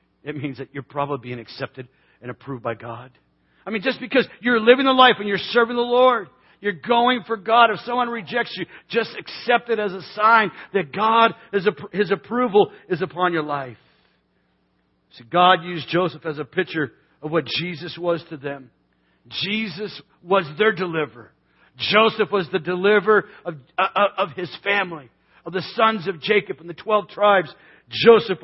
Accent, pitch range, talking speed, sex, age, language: American, 135-205 Hz, 175 wpm, male, 50-69, English